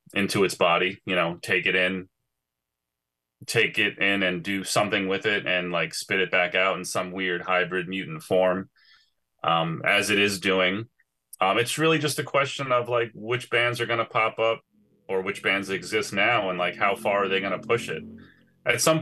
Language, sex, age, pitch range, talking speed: English, male, 30-49, 85-115 Hz, 205 wpm